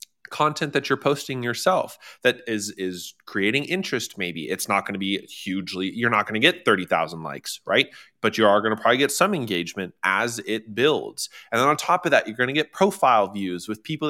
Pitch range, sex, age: 100-140 Hz, male, 20-39